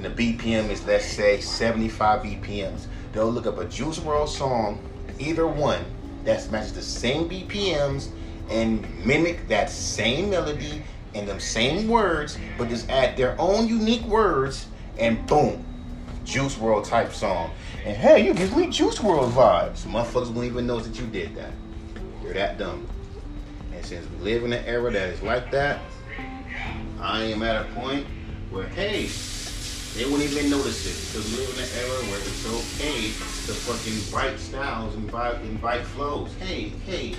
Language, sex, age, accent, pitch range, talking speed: English, male, 30-49, American, 100-130 Hz, 170 wpm